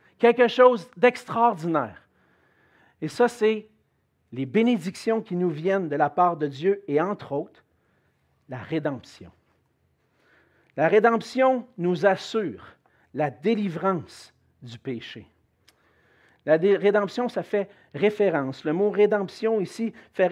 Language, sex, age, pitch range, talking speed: French, male, 50-69, 150-210 Hz, 125 wpm